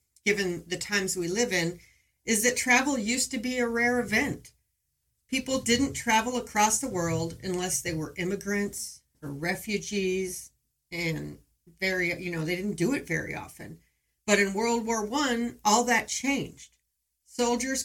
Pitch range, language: 175-225 Hz, English